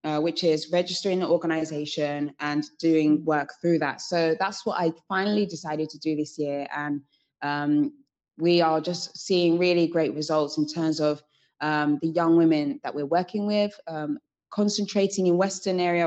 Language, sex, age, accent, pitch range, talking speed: English, female, 20-39, British, 155-180 Hz, 170 wpm